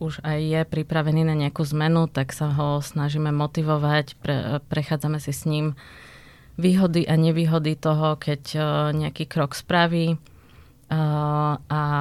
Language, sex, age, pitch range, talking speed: Slovak, female, 20-39, 140-155 Hz, 130 wpm